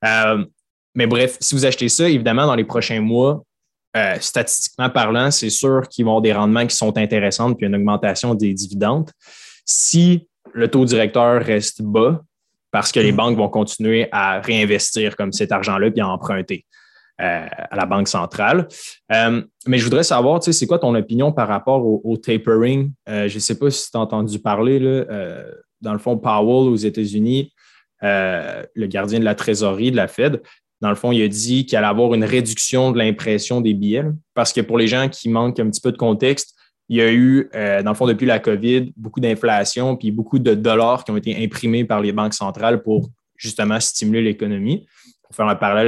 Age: 20-39